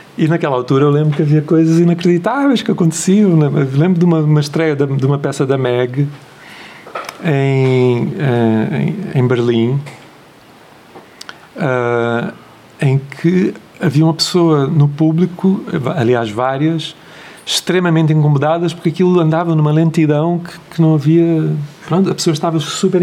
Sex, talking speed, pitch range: male, 140 wpm, 145-170 Hz